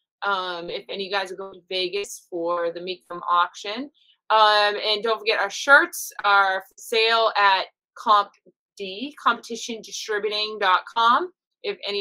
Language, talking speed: English, 145 wpm